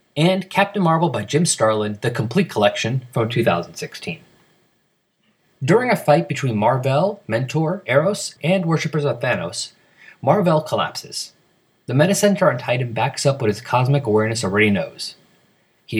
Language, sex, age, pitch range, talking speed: English, male, 30-49, 120-165 Hz, 145 wpm